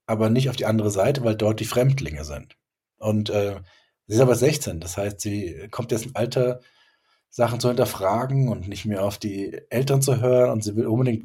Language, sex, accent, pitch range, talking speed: German, male, German, 105-125 Hz, 210 wpm